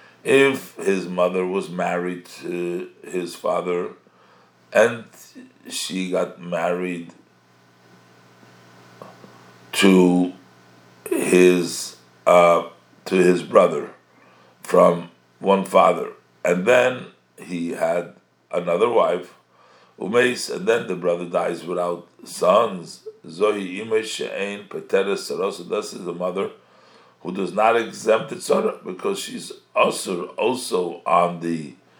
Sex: male